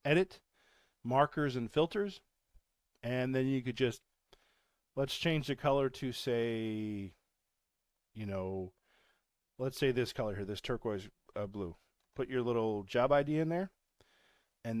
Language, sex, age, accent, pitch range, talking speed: English, male, 40-59, American, 100-130 Hz, 140 wpm